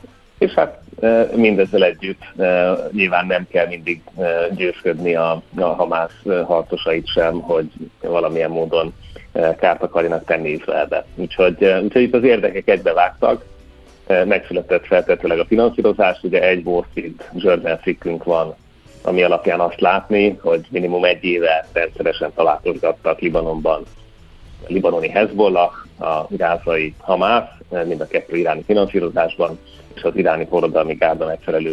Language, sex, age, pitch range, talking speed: Hungarian, male, 30-49, 85-105 Hz, 125 wpm